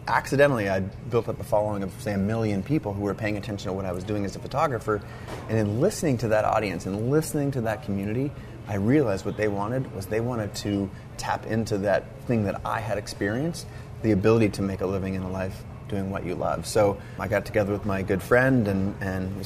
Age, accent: 30-49, American